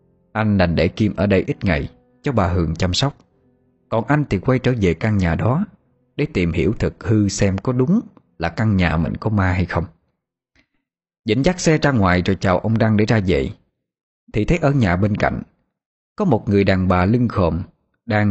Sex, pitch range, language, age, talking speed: male, 90-135 Hz, Vietnamese, 20-39, 210 wpm